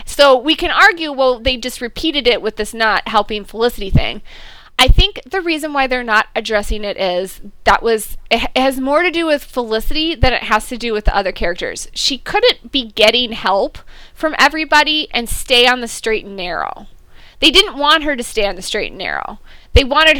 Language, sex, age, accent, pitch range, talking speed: English, female, 20-39, American, 220-290 Hz, 215 wpm